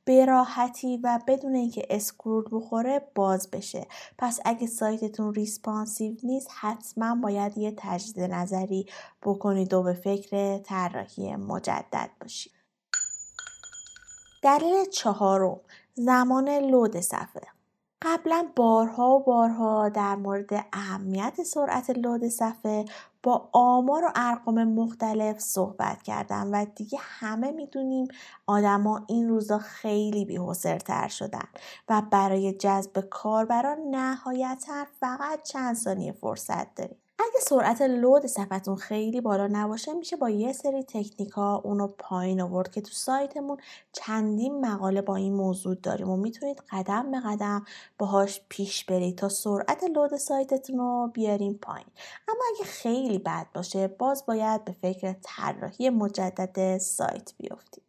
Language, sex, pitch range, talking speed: Persian, female, 200-265 Hz, 125 wpm